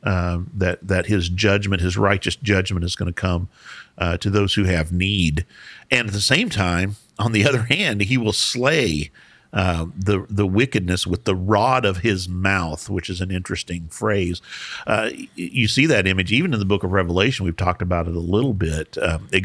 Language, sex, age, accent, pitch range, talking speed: English, male, 50-69, American, 90-110 Hz, 200 wpm